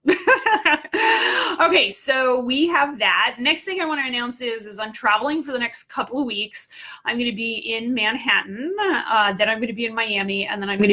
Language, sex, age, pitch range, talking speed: English, female, 30-49, 210-285 Hz, 215 wpm